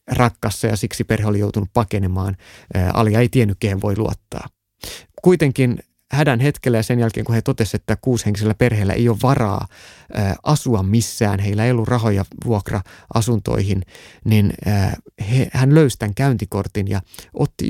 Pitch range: 105-130 Hz